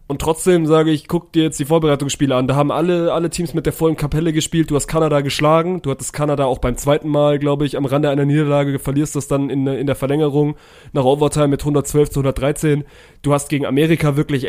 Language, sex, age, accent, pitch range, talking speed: German, male, 20-39, German, 140-160 Hz, 230 wpm